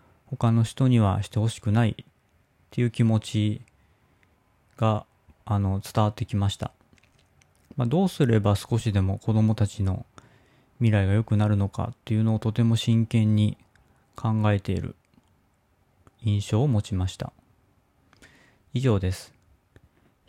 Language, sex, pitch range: Japanese, male, 100-125 Hz